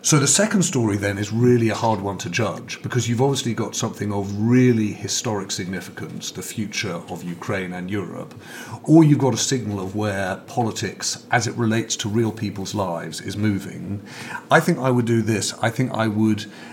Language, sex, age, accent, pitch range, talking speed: English, male, 40-59, British, 100-125 Hz, 195 wpm